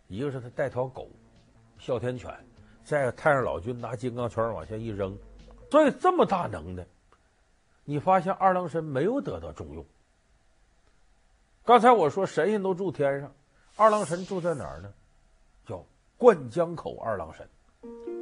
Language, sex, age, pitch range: Chinese, male, 50-69, 95-155 Hz